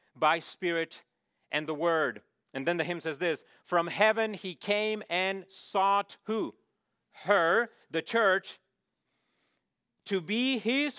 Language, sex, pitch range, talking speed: English, male, 155-195 Hz, 130 wpm